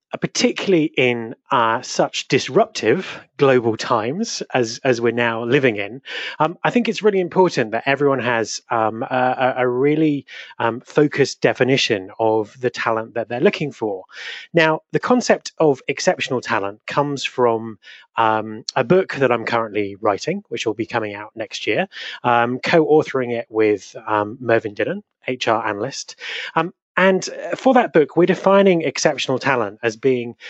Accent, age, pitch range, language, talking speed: British, 30-49, 115-165 Hz, English, 155 wpm